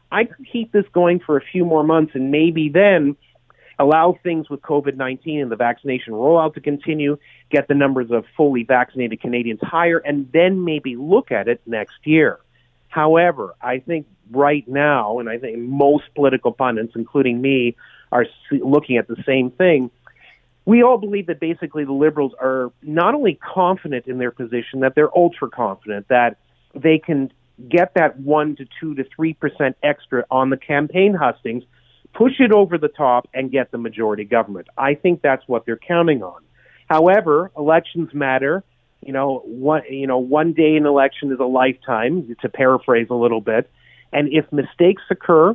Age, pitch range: 40-59, 125-165 Hz